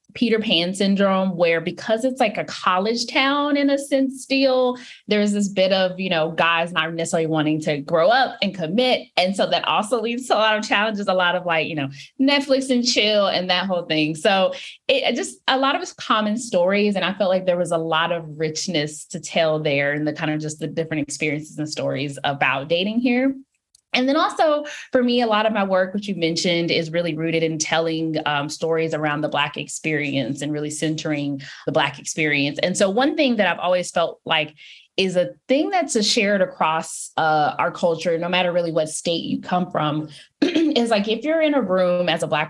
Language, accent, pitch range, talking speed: English, American, 155-215 Hz, 215 wpm